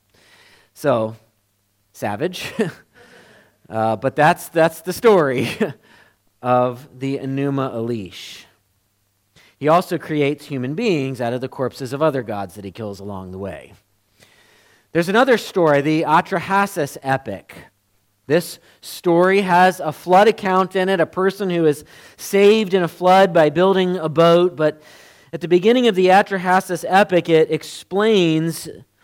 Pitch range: 140-190 Hz